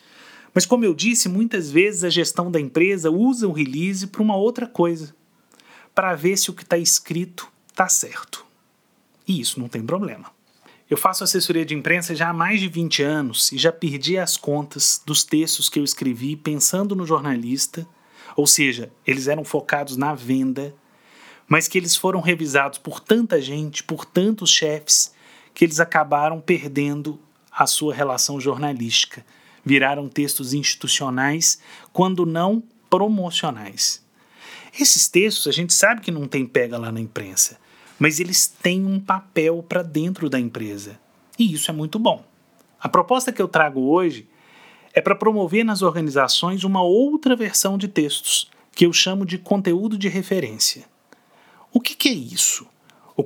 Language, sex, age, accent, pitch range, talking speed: Portuguese, male, 30-49, Brazilian, 145-190 Hz, 160 wpm